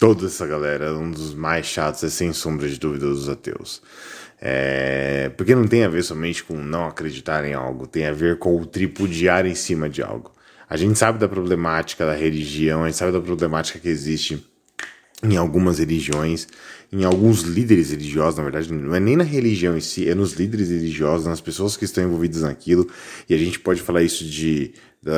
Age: 20-39